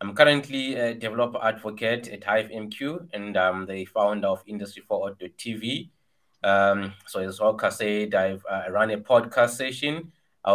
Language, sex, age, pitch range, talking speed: English, male, 20-39, 105-120 Hz, 165 wpm